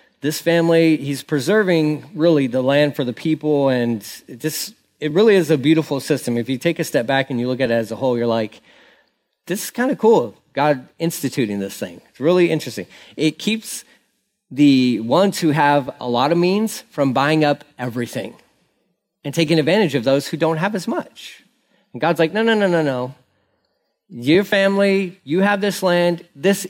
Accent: American